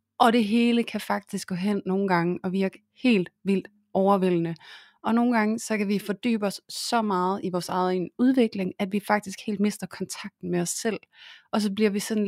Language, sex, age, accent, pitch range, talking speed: Danish, female, 30-49, native, 185-220 Hz, 205 wpm